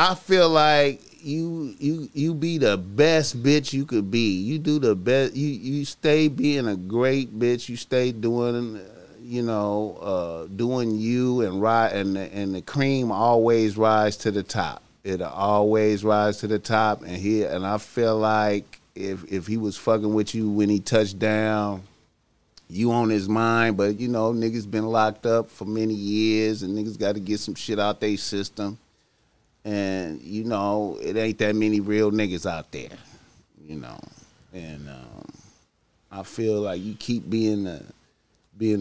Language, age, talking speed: English, 30-49, 180 wpm